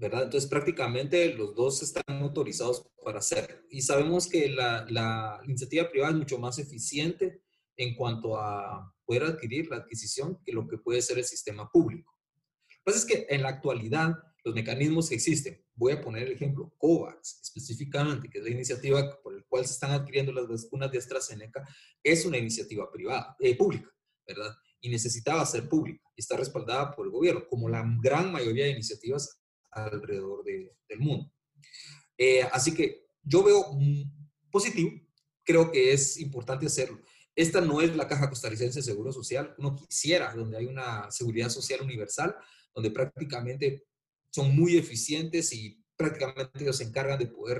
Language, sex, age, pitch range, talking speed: Spanish, male, 30-49, 125-160 Hz, 175 wpm